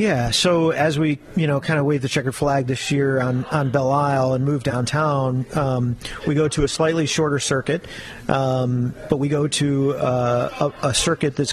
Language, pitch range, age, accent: English, 125-150 Hz, 40-59, American